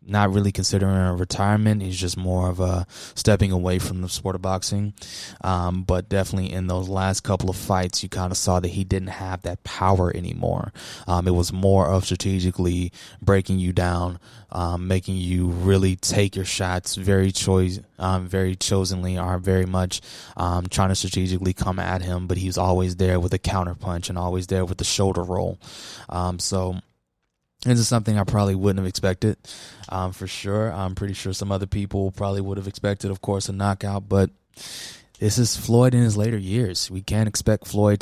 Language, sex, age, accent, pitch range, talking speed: English, male, 20-39, American, 90-100 Hz, 190 wpm